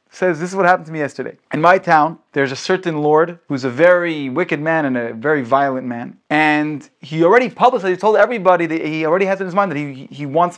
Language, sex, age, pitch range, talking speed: English, male, 30-49, 135-185 Hz, 245 wpm